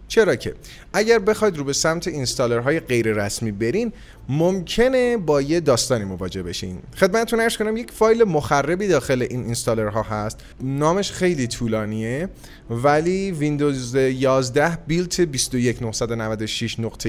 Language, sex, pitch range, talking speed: Persian, male, 120-165 Hz, 130 wpm